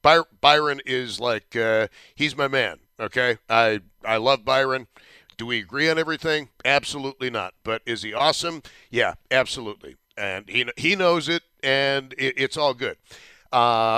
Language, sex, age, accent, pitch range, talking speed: English, male, 60-79, American, 115-145 Hz, 160 wpm